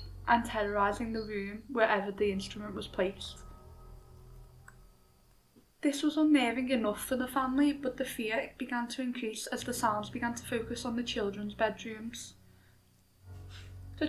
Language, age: English, 10-29